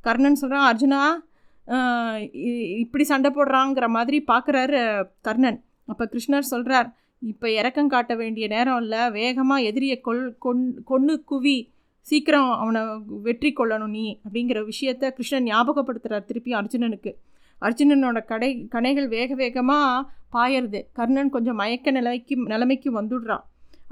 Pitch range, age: 225-275 Hz, 20-39